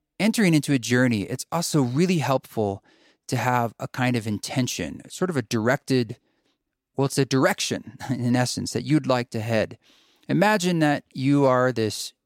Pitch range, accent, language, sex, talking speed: 120-145 Hz, American, English, male, 165 wpm